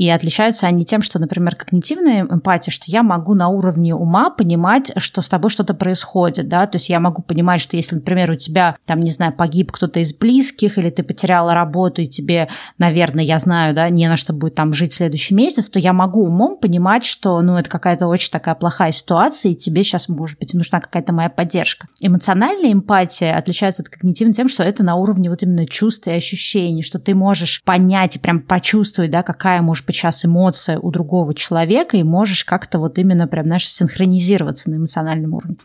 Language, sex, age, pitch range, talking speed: Russian, female, 20-39, 165-195 Hz, 200 wpm